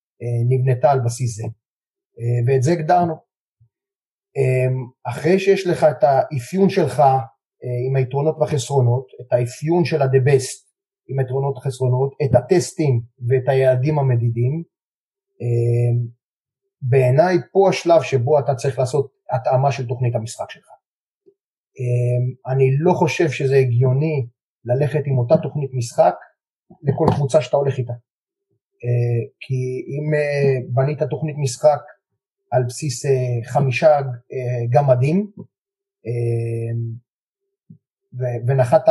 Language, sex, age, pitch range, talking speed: Hebrew, male, 30-49, 125-155 Hz, 110 wpm